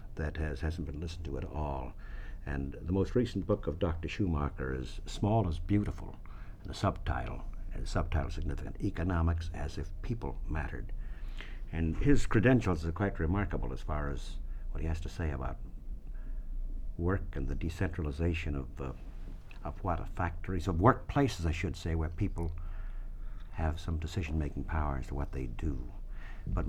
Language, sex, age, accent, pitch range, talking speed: English, male, 60-79, American, 75-100 Hz, 170 wpm